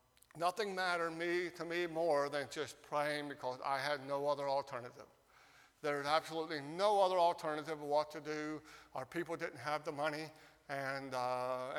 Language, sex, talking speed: English, male, 170 wpm